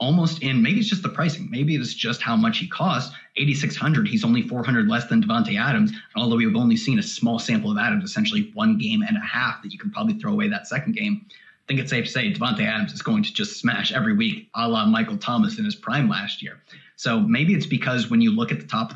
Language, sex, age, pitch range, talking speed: English, male, 30-49, 150-220 Hz, 255 wpm